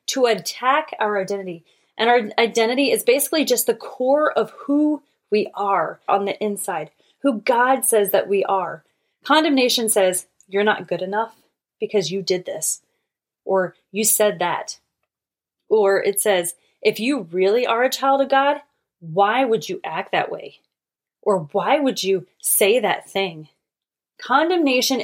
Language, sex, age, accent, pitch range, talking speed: English, female, 30-49, American, 195-250 Hz, 155 wpm